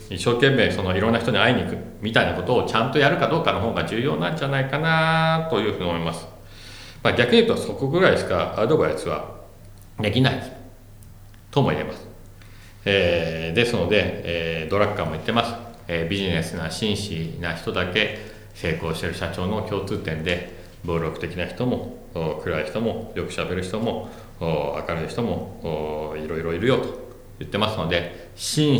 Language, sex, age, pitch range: Japanese, male, 40-59, 90-110 Hz